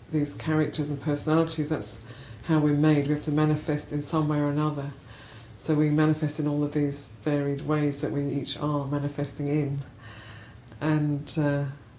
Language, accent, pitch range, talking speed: English, British, 120-155 Hz, 160 wpm